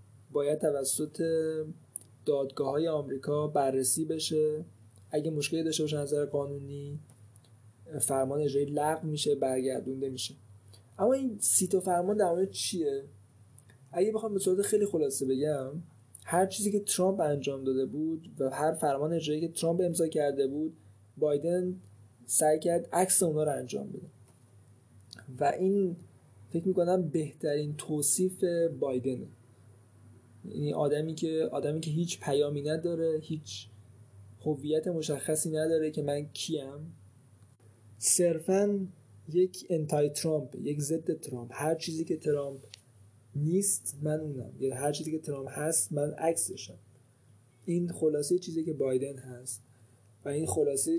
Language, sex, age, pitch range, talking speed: Persian, male, 20-39, 125-160 Hz, 130 wpm